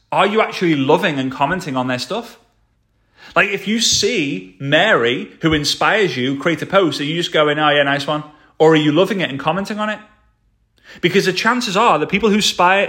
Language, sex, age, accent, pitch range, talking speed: English, male, 30-49, British, 140-185 Hz, 210 wpm